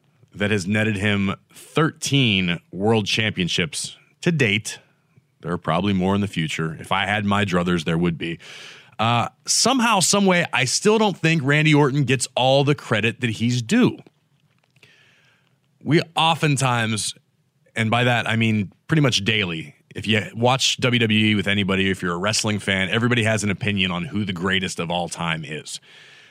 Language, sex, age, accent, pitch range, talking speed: English, male, 30-49, American, 105-145 Hz, 165 wpm